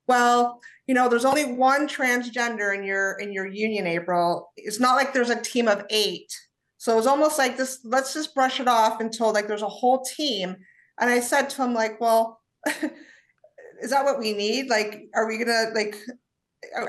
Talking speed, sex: 200 wpm, female